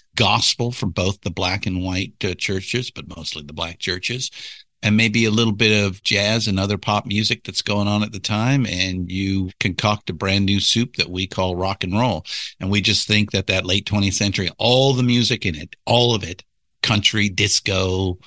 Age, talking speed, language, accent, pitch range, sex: 50-69, 205 wpm, English, American, 90-115 Hz, male